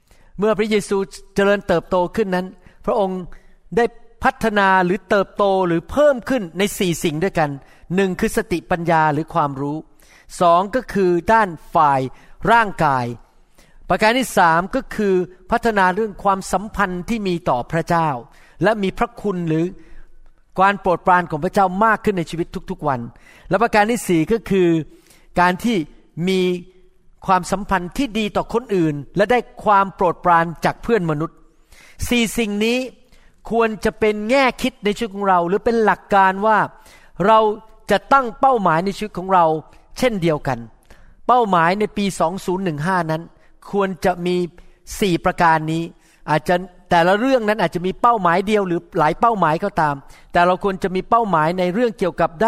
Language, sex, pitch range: Thai, male, 170-215 Hz